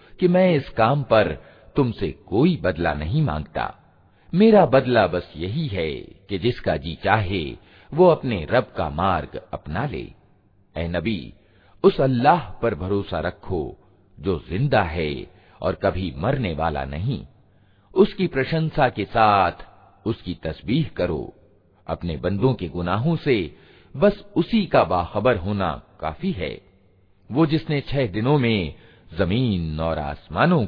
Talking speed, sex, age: 130 wpm, male, 50-69